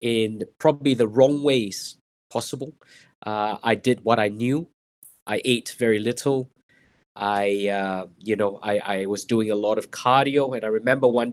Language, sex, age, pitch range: Thai, male, 20-39, 105-130 Hz